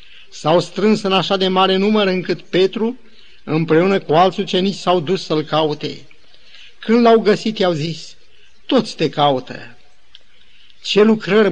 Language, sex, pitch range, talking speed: Romanian, male, 150-190 Hz, 140 wpm